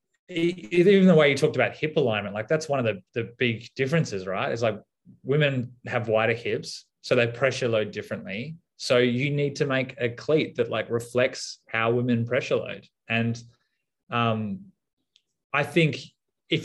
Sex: male